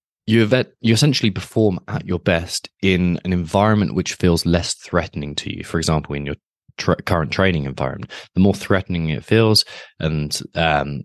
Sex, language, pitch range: male, English, 75-95 Hz